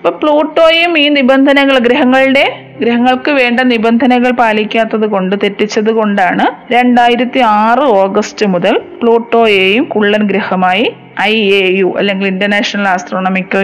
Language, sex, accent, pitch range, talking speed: Malayalam, female, native, 205-255 Hz, 110 wpm